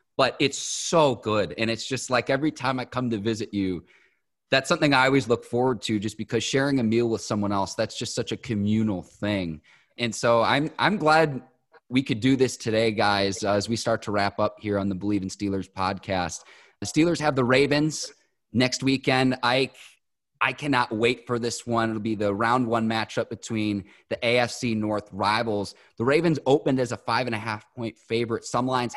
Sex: male